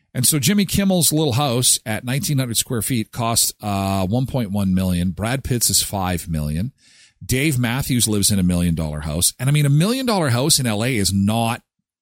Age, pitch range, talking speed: 40-59, 110-170 Hz, 190 wpm